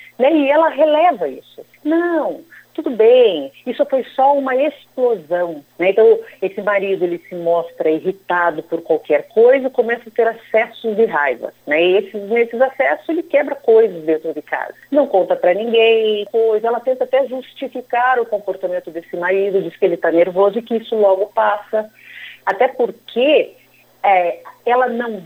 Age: 50-69